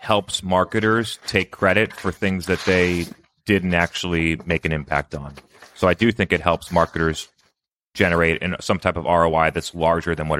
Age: 30-49